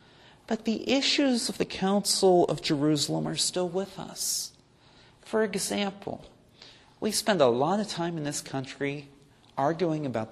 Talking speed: 145 wpm